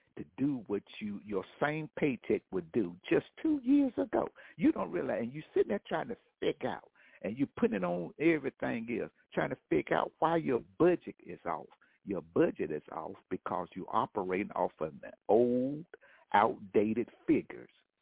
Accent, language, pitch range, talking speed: American, English, 115-165 Hz, 175 wpm